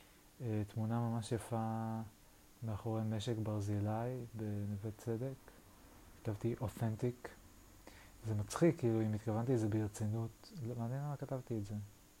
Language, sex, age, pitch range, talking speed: Hebrew, male, 20-39, 105-115 Hz, 115 wpm